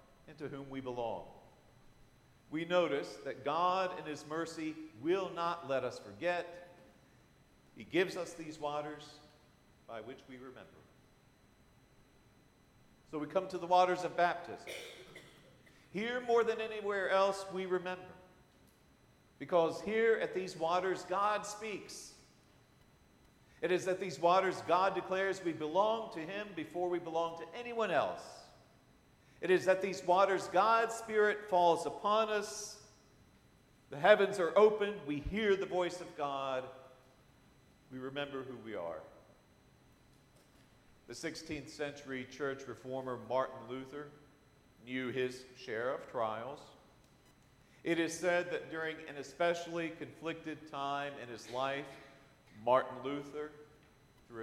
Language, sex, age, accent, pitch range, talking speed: English, male, 50-69, American, 135-185 Hz, 130 wpm